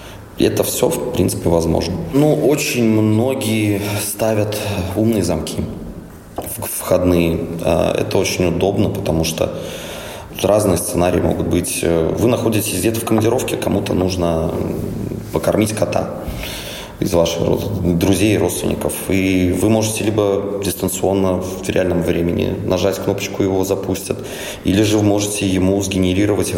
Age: 20-39